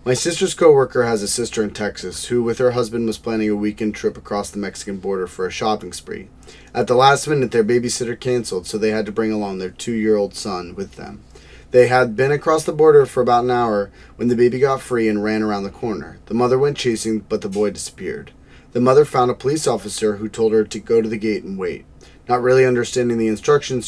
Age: 30-49